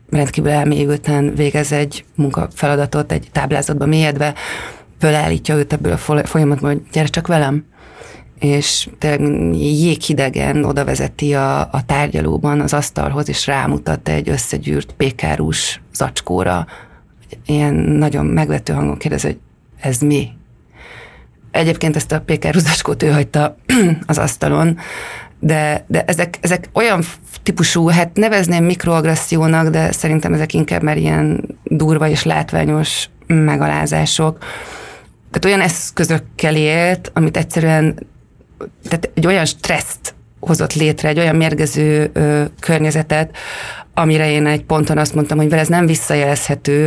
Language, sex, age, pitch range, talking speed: Hungarian, female, 30-49, 145-155 Hz, 125 wpm